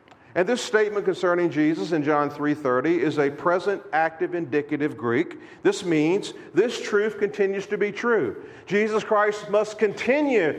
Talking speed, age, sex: 145 wpm, 40-59, male